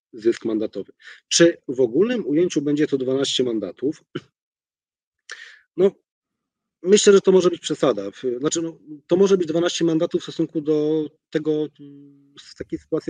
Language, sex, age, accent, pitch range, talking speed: Polish, male, 30-49, native, 120-165 Hz, 140 wpm